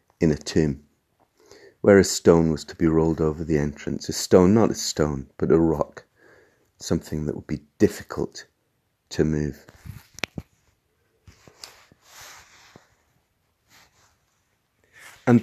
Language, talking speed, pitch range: English, 115 wpm, 80-110 Hz